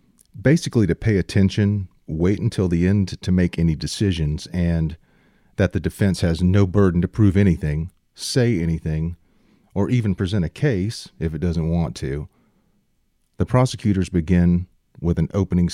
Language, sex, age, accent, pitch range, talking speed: English, male, 40-59, American, 85-105 Hz, 155 wpm